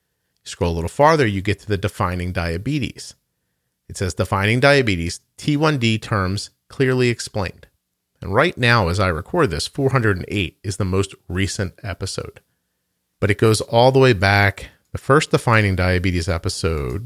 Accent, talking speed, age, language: American, 150 wpm, 40-59, English